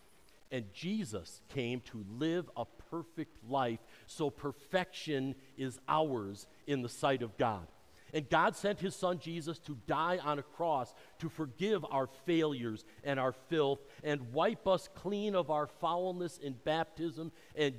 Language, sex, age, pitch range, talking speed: English, male, 50-69, 115-155 Hz, 150 wpm